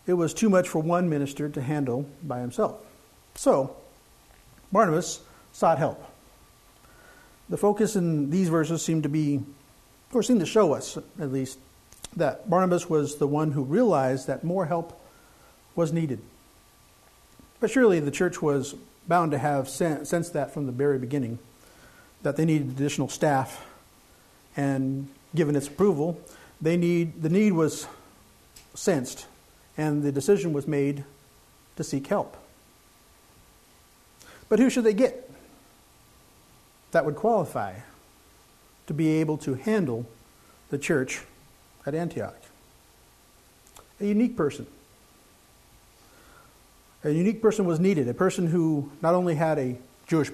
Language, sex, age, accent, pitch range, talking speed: English, male, 50-69, American, 140-175 Hz, 135 wpm